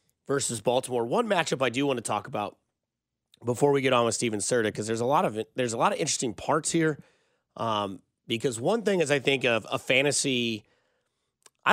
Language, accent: English, American